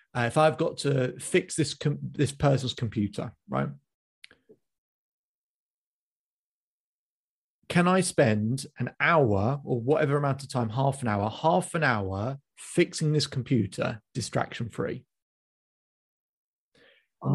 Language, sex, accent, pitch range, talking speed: English, male, British, 120-155 Hz, 115 wpm